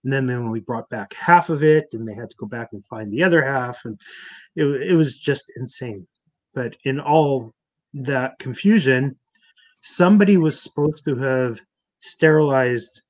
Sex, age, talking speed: male, 30-49, 170 wpm